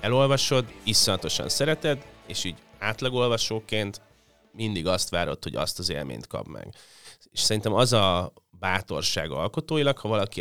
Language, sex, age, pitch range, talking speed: Hungarian, male, 30-49, 90-110 Hz, 135 wpm